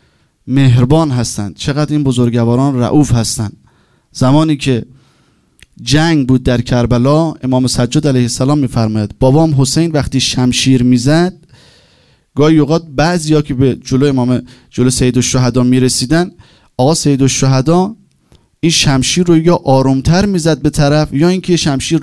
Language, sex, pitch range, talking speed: Persian, male, 130-170 Hz, 135 wpm